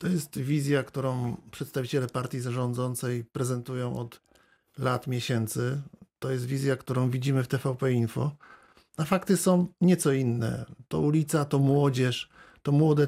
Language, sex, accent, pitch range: Polish, male, native, 140-175 Hz